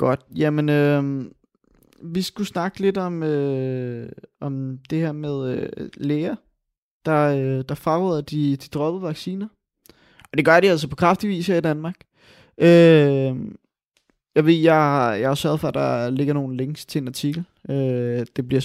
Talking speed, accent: 170 wpm, native